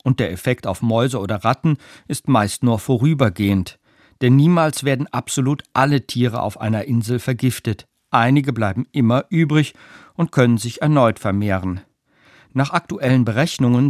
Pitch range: 115-150 Hz